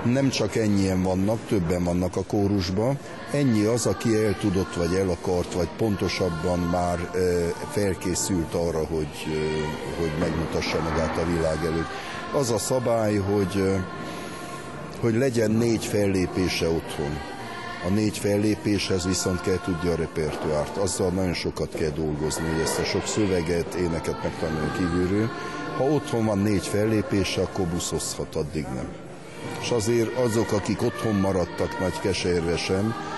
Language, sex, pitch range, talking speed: Hungarian, male, 85-110 Hz, 135 wpm